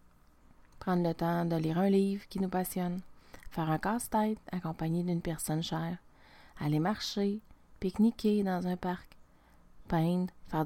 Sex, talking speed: female, 140 wpm